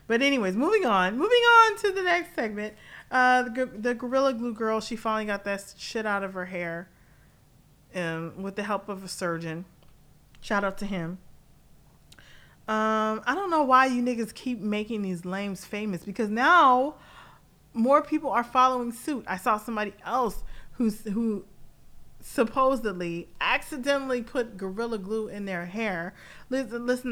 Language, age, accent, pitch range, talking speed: English, 30-49, American, 190-245 Hz, 150 wpm